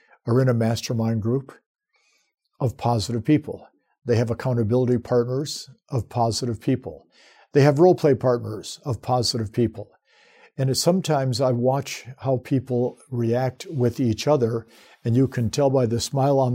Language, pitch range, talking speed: English, 120-140 Hz, 145 wpm